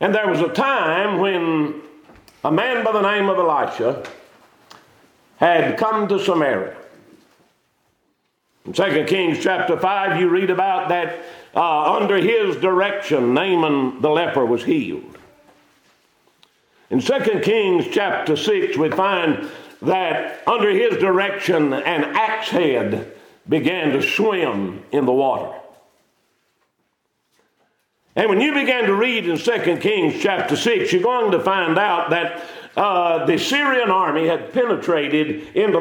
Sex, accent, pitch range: male, American, 165-225 Hz